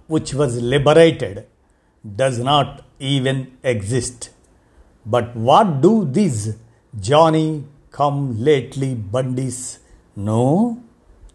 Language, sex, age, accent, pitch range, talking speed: Telugu, male, 50-69, native, 120-150 Hz, 70 wpm